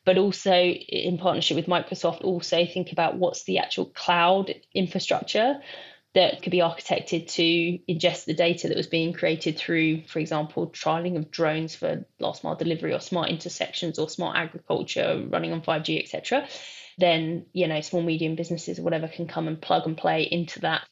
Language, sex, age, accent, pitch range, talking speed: English, female, 20-39, British, 165-180 Hz, 180 wpm